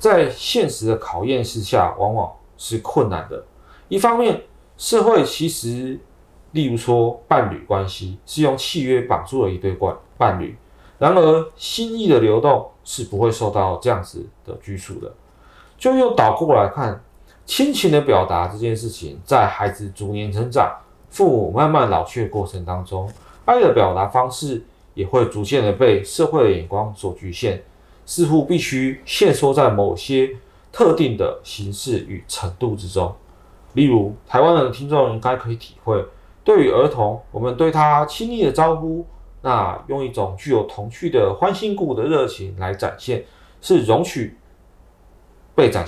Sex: male